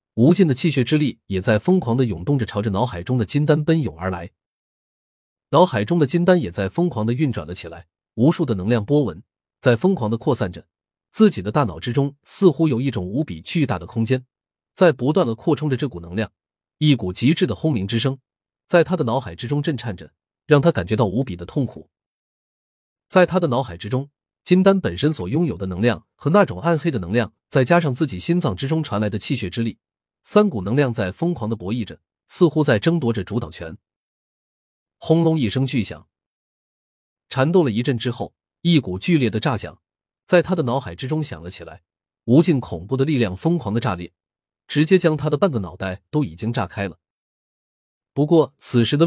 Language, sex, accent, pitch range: Chinese, male, native, 100-155 Hz